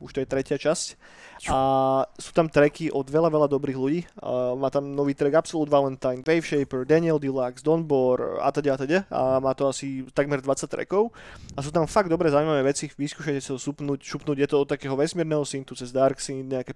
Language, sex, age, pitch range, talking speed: Slovak, male, 20-39, 130-145 Hz, 210 wpm